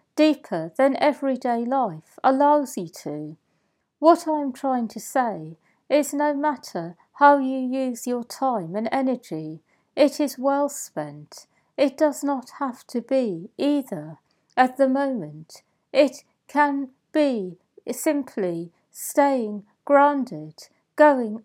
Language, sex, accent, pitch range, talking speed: English, female, British, 180-285 Hz, 120 wpm